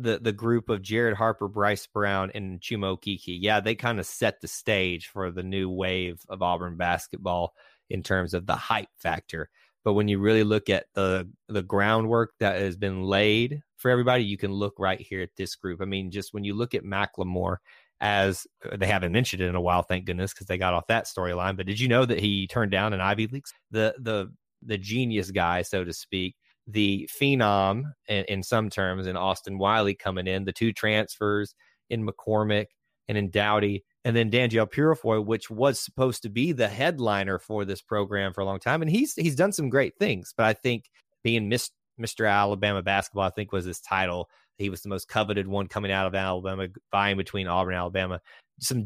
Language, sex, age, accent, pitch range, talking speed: English, male, 30-49, American, 95-115 Hz, 210 wpm